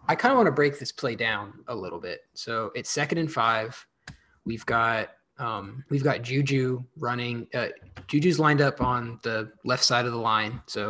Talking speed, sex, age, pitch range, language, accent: 200 wpm, male, 20-39, 115-140 Hz, English, American